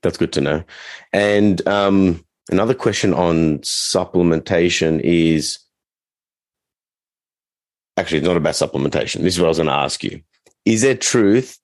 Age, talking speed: 30-49, 145 wpm